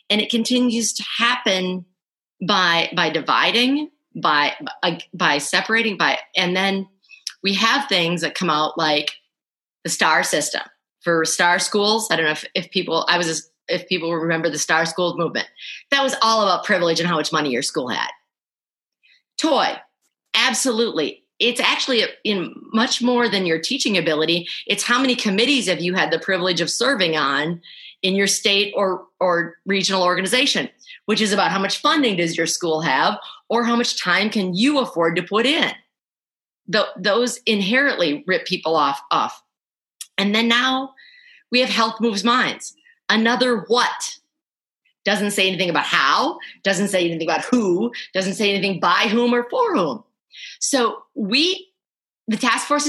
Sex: female